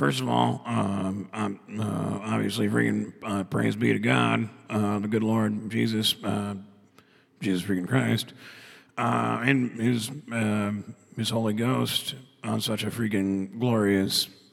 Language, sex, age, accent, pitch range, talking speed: English, male, 40-59, American, 70-115 Hz, 135 wpm